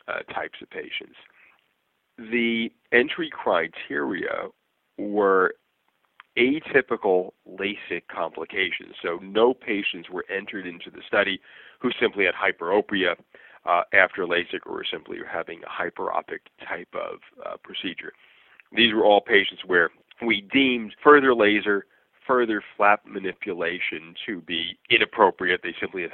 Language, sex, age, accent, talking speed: English, male, 40-59, American, 120 wpm